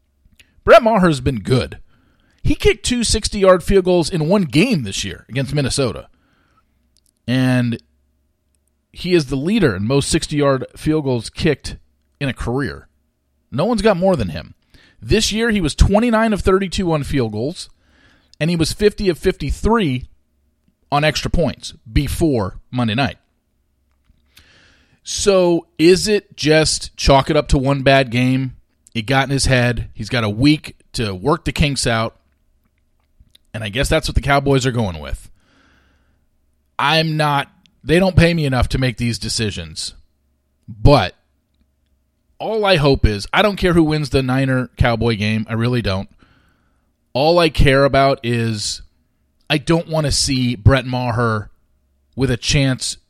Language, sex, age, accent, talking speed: English, male, 40-59, American, 155 wpm